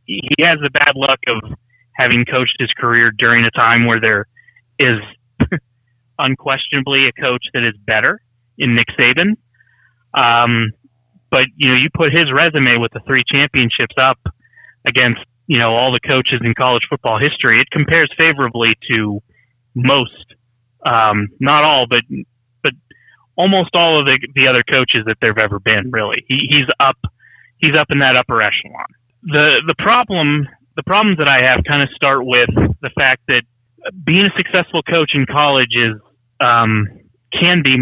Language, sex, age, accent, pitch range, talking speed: English, male, 30-49, American, 120-140 Hz, 165 wpm